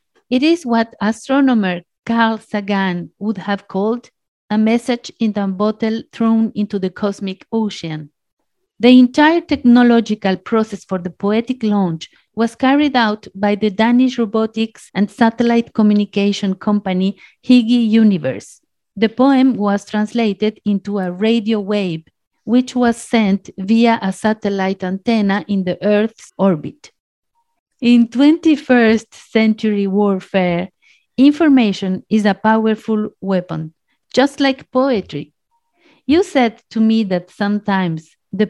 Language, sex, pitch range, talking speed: English, female, 200-240 Hz, 120 wpm